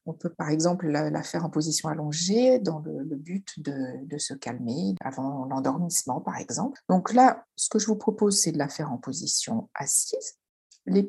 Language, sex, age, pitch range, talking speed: French, female, 50-69, 160-245 Hz, 195 wpm